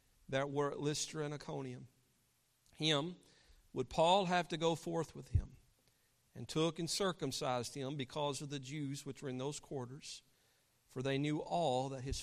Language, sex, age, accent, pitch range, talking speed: English, male, 50-69, American, 135-165 Hz, 170 wpm